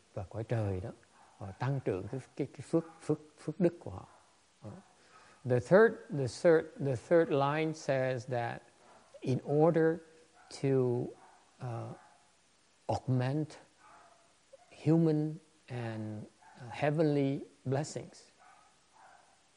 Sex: male